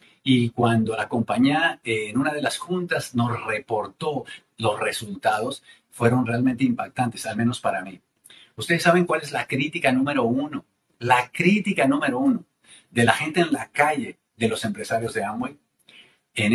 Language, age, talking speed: Spanish, 50-69, 160 wpm